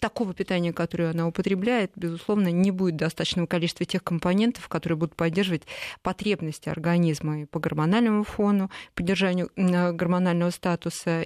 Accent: native